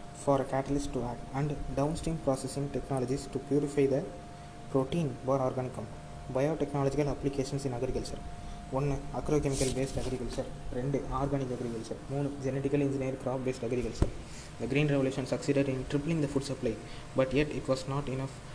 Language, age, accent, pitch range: Tamil, 20-39, native, 125-145 Hz